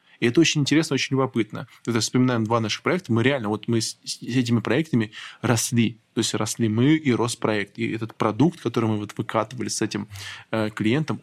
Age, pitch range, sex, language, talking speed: 20-39, 115-140 Hz, male, Russian, 185 wpm